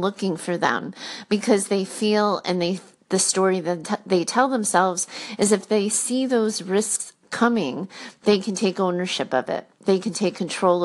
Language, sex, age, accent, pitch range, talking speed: English, female, 30-49, American, 185-225 Hz, 170 wpm